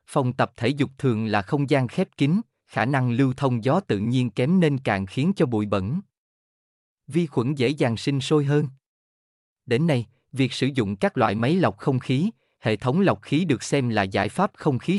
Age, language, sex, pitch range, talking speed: 20-39, Vietnamese, male, 110-155 Hz, 210 wpm